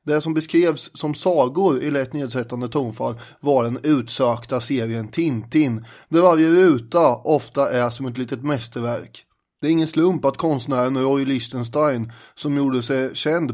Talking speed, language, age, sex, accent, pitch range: 155 wpm, Swedish, 30-49, male, native, 125-155 Hz